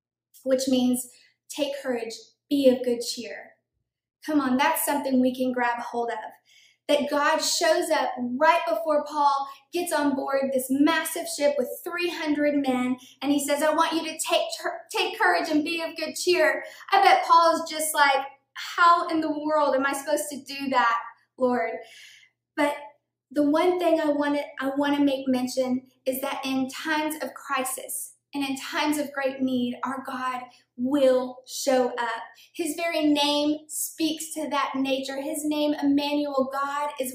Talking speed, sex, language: 170 wpm, female, English